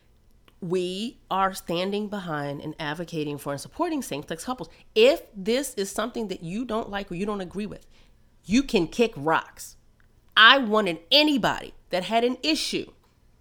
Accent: American